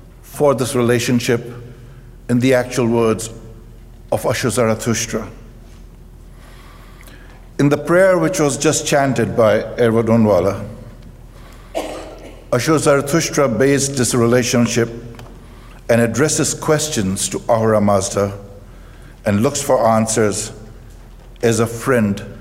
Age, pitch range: 60-79, 115-140 Hz